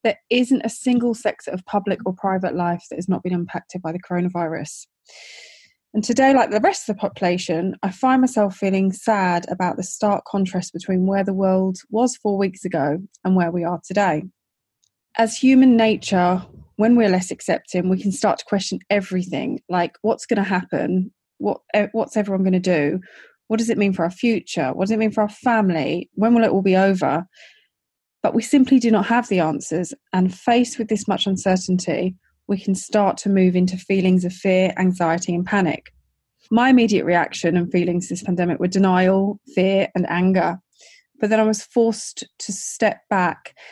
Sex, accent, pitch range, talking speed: female, British, 180-215 Hz, 185 wpm